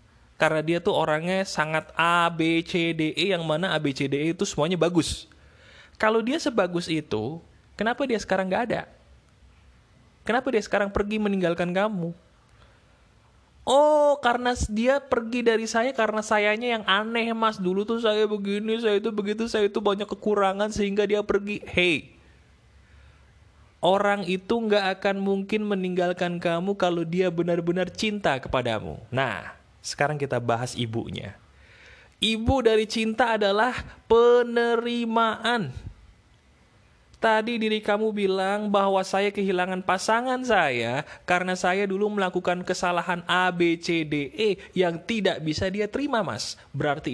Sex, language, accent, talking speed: male, Indonesian, native, 140 wpm